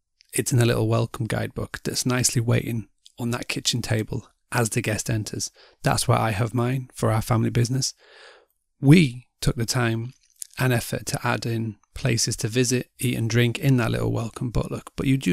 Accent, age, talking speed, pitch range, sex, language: British, 30-49, 195 wpm, 115-130 Hz, male, English